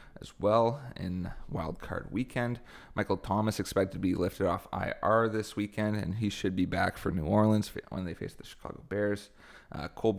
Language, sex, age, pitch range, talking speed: English, male, 20-39, 95-105 Hz, 185 wpm